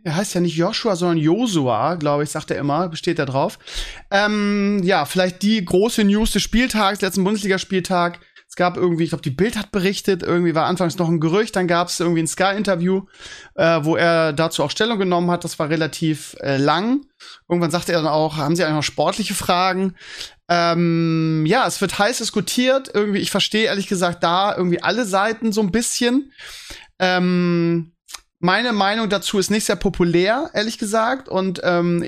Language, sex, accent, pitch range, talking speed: German, male, German, 170-205 Hz, 190 wpm